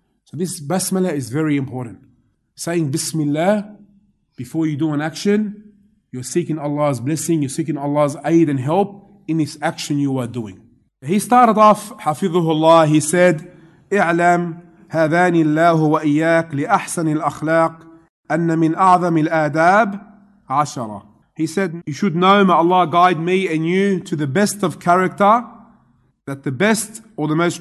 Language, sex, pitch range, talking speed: English, male, 150-200 Hz, 135 wpm